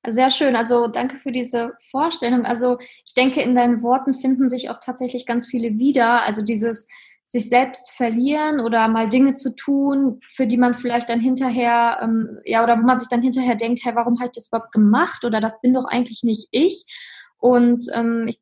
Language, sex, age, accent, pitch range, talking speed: German, female, 20-39, German, 225-255 Hz, 200 wpm